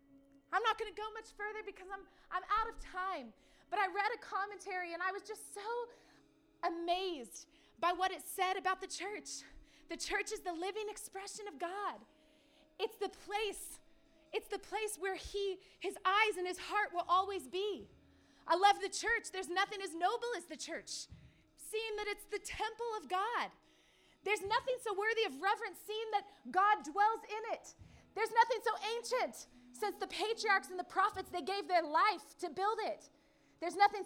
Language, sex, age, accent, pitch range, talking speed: English, female, 20-39, American, 335-410 Hz, 180 wpm